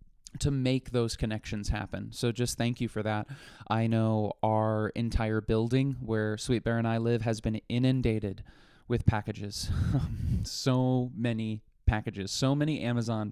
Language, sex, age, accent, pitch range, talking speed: English, male, 20-39, American, 110-130 Hz, 150 wpm